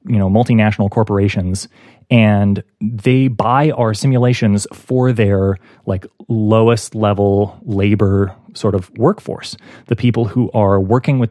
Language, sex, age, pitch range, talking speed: English, male, 30-49, 100-125 Hz, 125 wpm